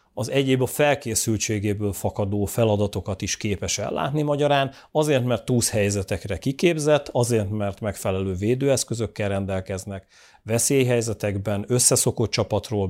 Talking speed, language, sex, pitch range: 105 wpm, Hungarian, male, 100-120 Hz